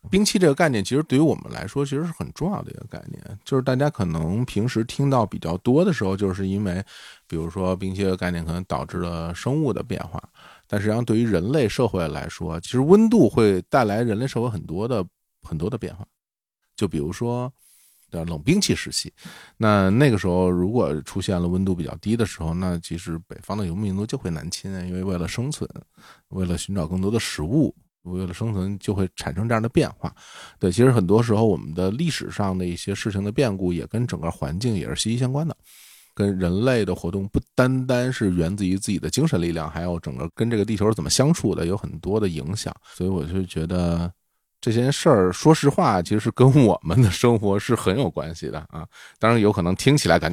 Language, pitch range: Chinese, 90-125 Hz